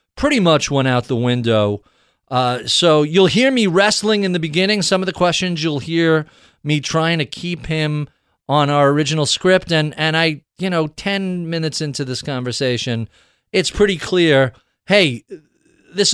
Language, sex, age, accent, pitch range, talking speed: English, male, 40-59, American, 140-185 Hz, 165 wpm